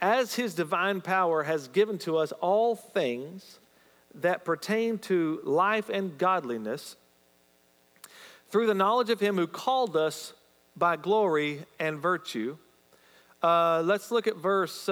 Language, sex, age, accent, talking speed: English, male, 40-59, American, 135 wpm